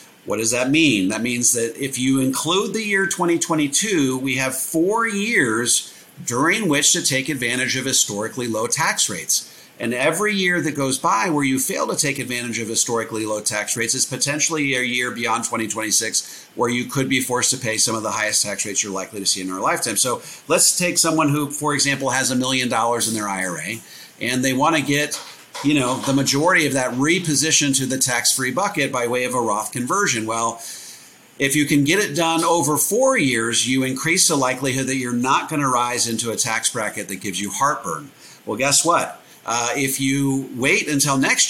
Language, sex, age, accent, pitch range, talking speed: English, male, 40-59, American, 120-145 Hz, 205 wpm